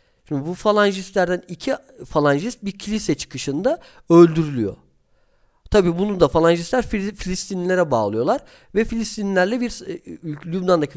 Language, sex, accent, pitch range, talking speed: Turkish, male, native, 145-210 Hz, 105 wpm